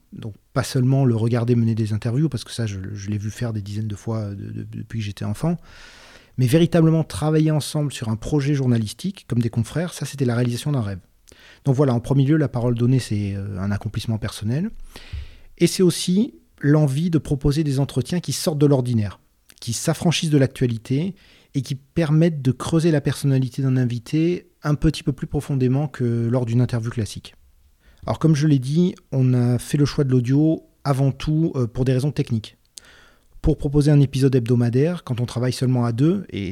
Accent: French